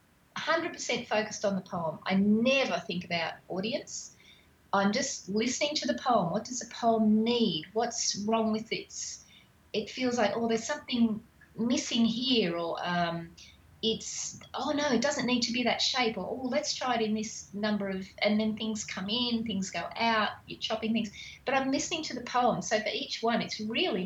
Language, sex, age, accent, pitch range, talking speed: English, female, 30-49, Australian, 190-235 Hz, 190 wpm